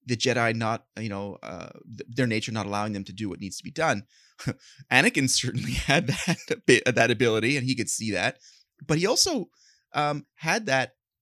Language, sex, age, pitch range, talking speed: English, male, 30-49, 110-135 Hz, 205 wpm